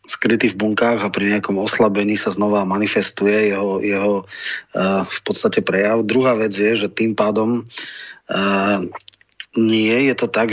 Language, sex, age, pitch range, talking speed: Slovak, male, 30-49, 105-115 Hz, 155 wpm